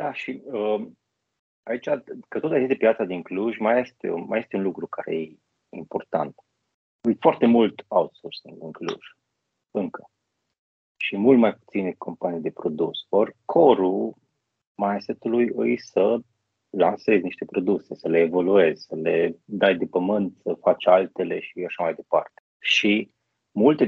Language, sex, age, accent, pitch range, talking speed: Romanian, male, 30-49, native, 105-135 Hz, 150 wpm